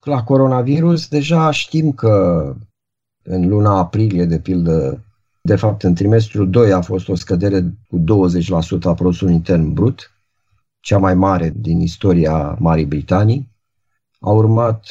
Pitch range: 90-110 Hz